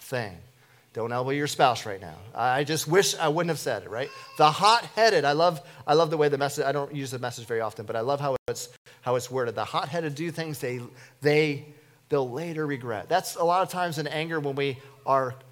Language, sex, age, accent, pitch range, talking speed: English, male, 40-59, American, 125-160 Hz, 230 wpm